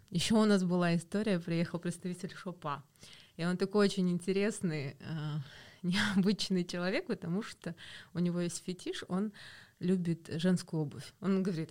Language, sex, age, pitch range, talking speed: Russian, female, 20-39, 155-190 Hz, 140 wpm